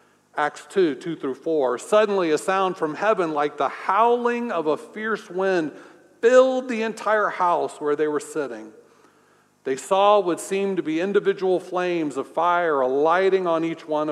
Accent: American